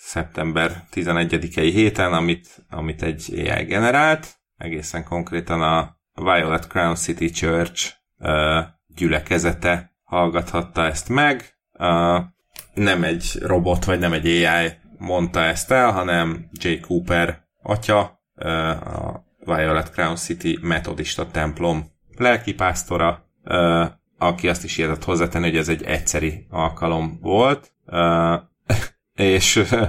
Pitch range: 80-90 Hz